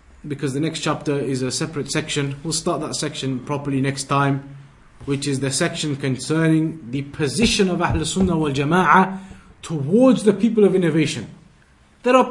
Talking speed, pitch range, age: 155 wpm, 145-190 Hz, 30-49